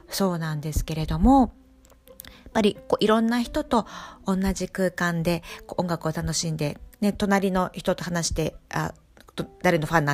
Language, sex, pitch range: Japanese, female, 170-225 Hz